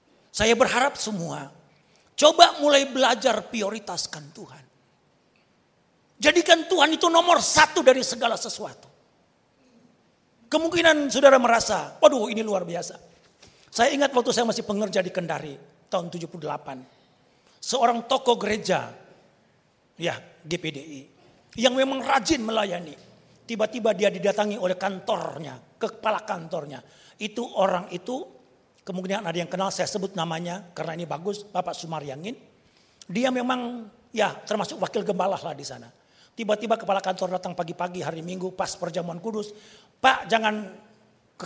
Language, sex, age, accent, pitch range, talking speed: Indonesian, male, 40-59, native, 175-240 Hz, 125 wpm